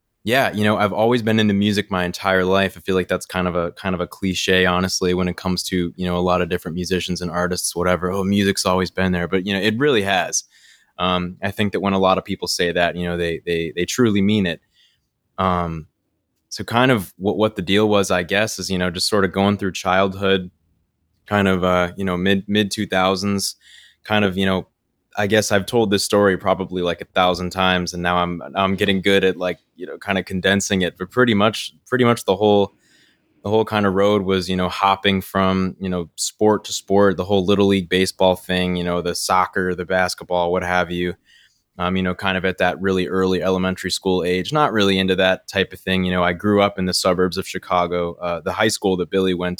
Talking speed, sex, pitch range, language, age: 240 wpm, male, 90-100 Hz, English, 20-39